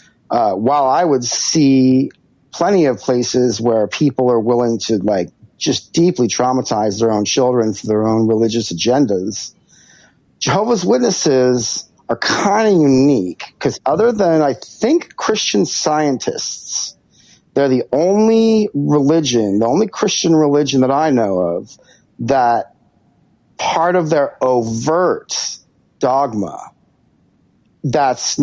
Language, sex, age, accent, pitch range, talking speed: English, male, 40-59, American, 120-155 Hz, 120 wpm